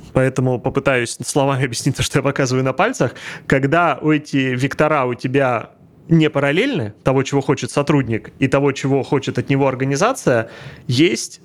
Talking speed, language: 150 wpm, Russian